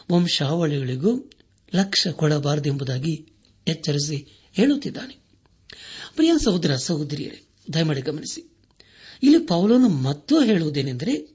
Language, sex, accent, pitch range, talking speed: Kannada, male, native, 140-210 Hz, 75 wpm